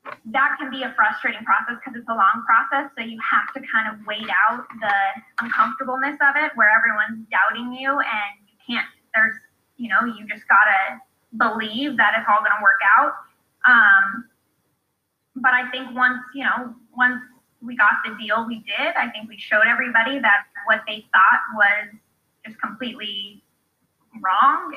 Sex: female